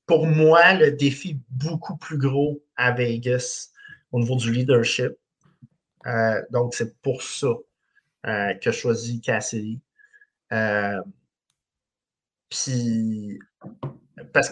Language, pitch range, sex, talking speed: French, 115-135 Hz, male, 110 wpm